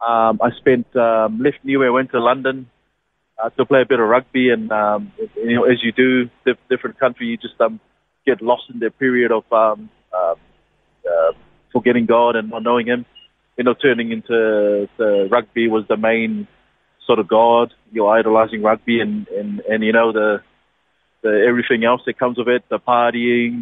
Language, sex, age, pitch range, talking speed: English, male, 20-39, 110-130 Hz, 195 wpm